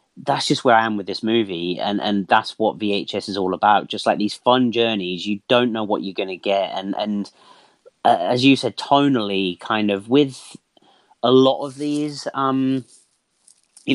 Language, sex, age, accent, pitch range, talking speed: English, male, 30-49, British, 105-140 Hz, 195 wpm